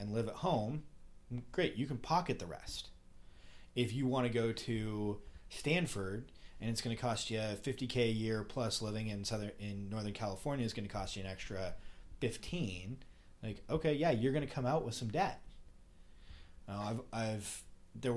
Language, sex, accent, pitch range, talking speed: English, male, American, 95-115 Hz, 190 wpm